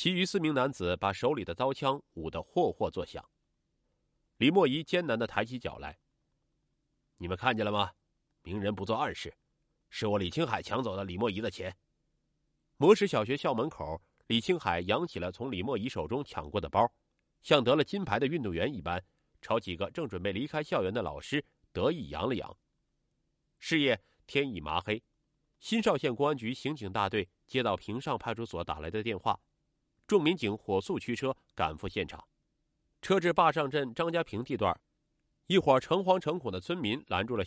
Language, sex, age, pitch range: Chinese, male, 30-49, 105-165 Hz